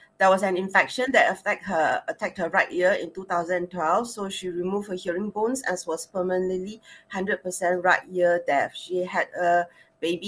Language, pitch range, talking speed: English, 175-205 Hz, 175 wpm